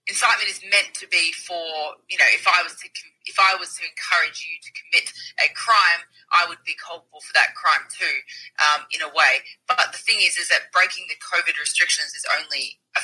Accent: Australian